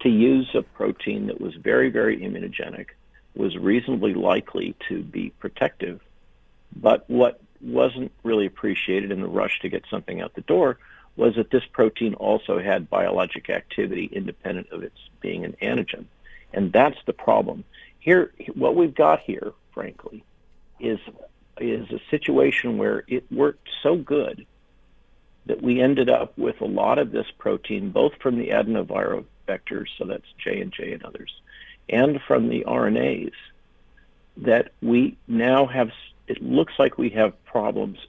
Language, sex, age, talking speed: English, male, 50-69, 155 wpm